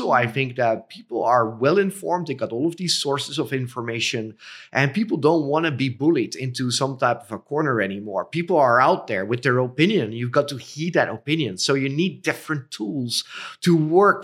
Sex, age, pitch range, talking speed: male, 30-49, 125-160 Hz, 205 wpm